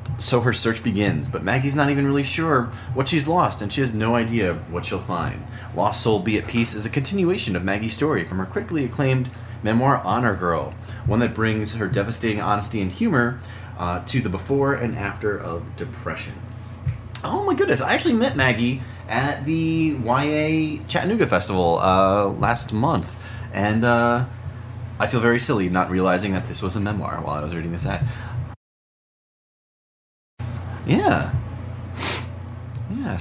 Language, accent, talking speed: English, American, 165 wpm